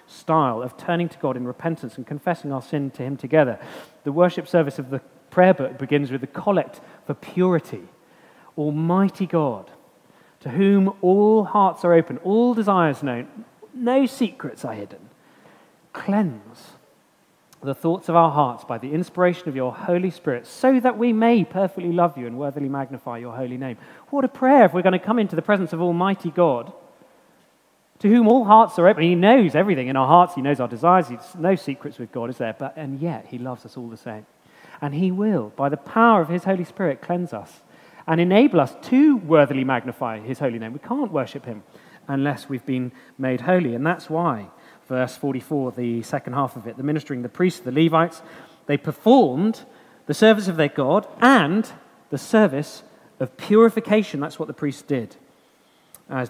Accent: British